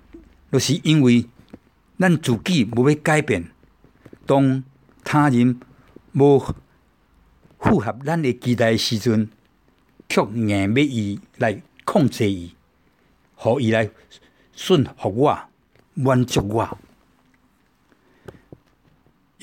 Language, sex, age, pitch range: Chinese, male, 60-79, 105-140 Hz